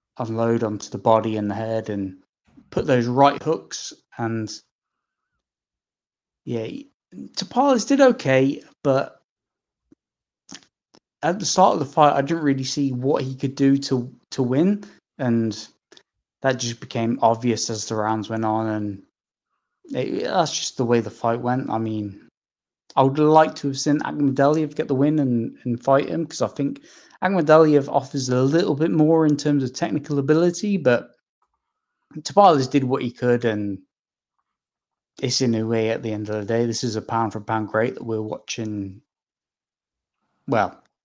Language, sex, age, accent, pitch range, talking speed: English, male, 20-39, British, 110-145 Hz, 160 wpm